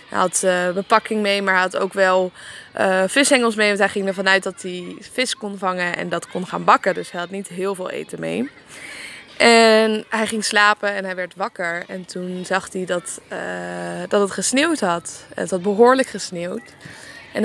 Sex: female